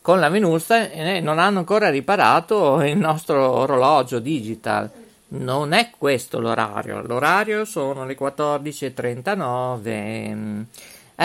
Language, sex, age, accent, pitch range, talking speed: Italian, male, 50-69, native, 130-205 Hz, 105 wpm